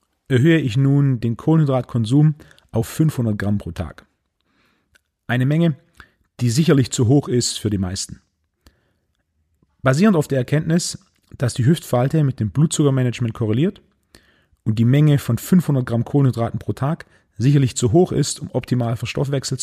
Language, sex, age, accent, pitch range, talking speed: German, male, 40-59, German, 110-145 Hz, 145 wpm